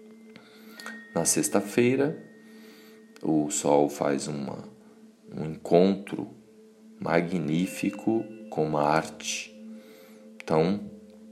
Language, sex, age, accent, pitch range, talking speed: Portuguese, male, 40-59, Brazilian, 80-110 Hz, 70 wpm